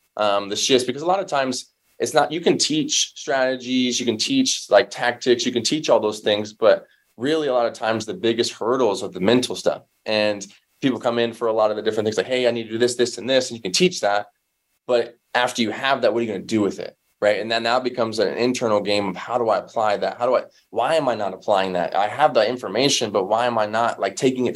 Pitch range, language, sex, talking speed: 105-125 Hz, English, male, 275 wpm